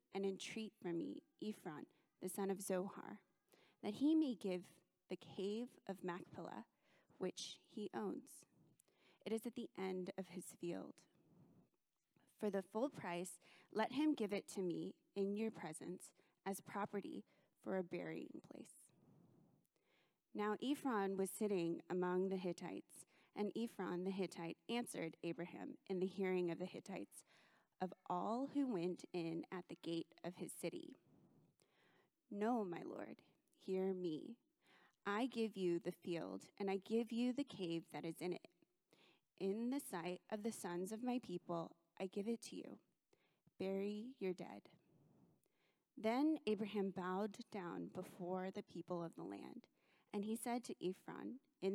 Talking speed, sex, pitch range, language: 150 wpm, female, 175-220 Hz, English